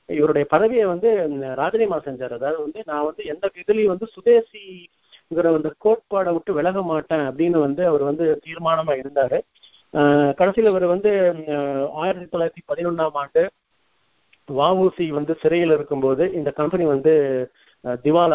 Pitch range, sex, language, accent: 140-175 Hz, male, Tamil, native